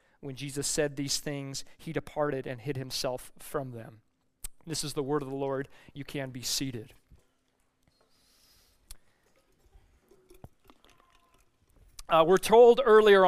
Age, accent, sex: 30-49, American, male